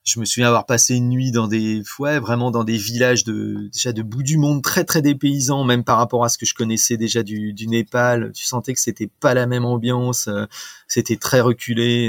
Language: French